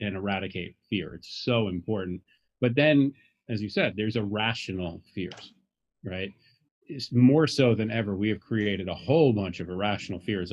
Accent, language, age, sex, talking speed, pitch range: American, English, 40-59, male, 165 wpm, 100-130 Hz